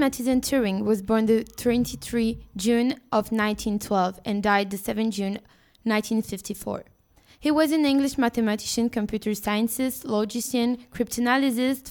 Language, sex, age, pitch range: French, female, 20-39, 215-250 Hz